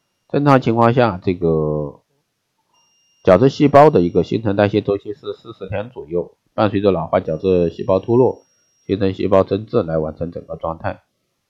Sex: male